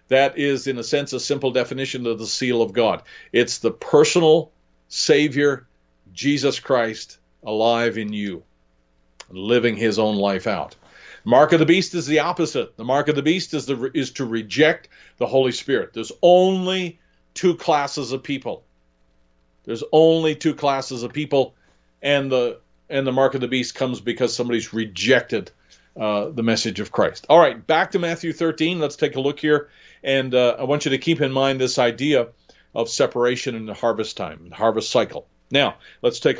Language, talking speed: English, 180 wpm